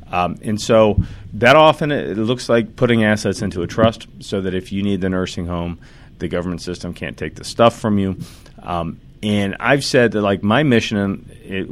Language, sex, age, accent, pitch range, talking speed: English, male, 40-59, American, 90-115 Hz, 205 wpm